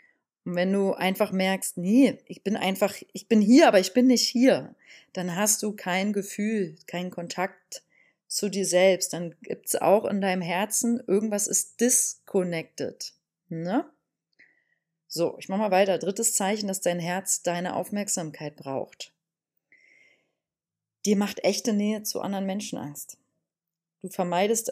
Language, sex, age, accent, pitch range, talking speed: German, female, 30-49, German, 180-215 Hz, 150 wpm